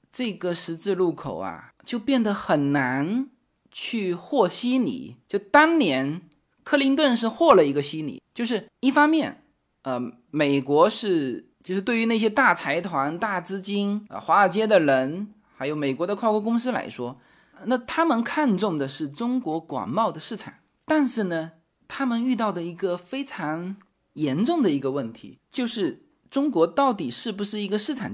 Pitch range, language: 160-255 Hz, Chinese